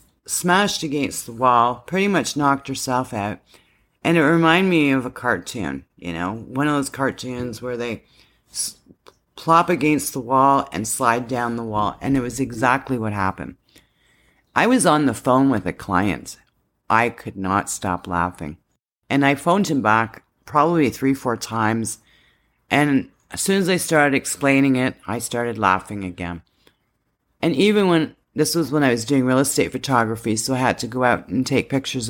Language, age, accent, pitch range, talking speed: English, 40-59, American, 115-145 Hz, 175 wpm